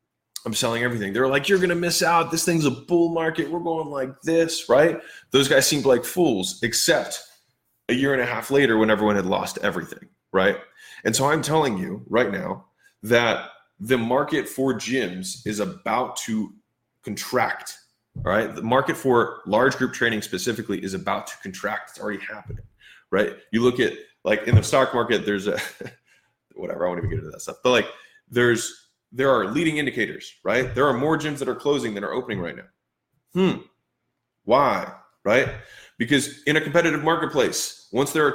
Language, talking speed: English, 190 wpm